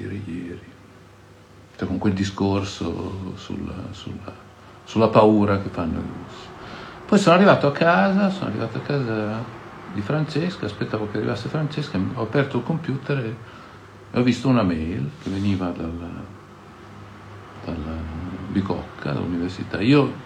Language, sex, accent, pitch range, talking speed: Italian, male, native, 95-125 Hz, 125 wpm